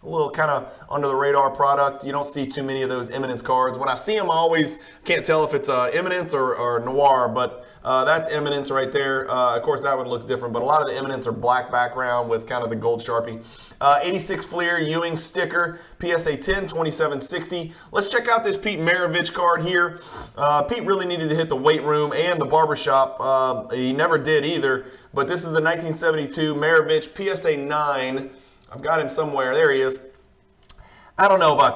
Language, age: English, 30-49